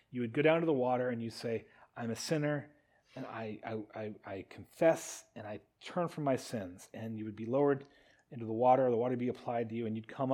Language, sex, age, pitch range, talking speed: English, male, 30-49, 115-150 Hz, 250 wpm